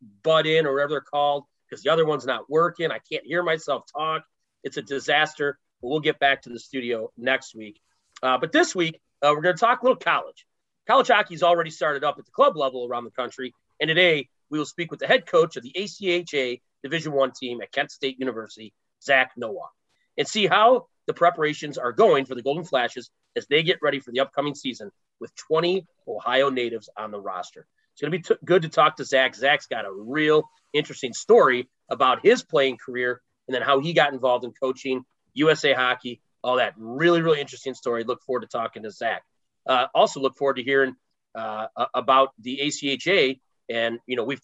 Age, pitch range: 30-49, 125-160 Hz